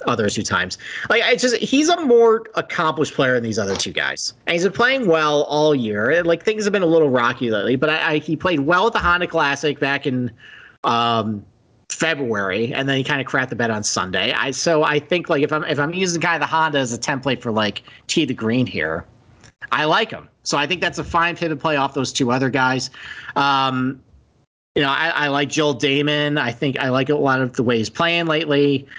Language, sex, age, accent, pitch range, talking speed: English, male, 40-59, American, 130-150 Hz, 240 wpm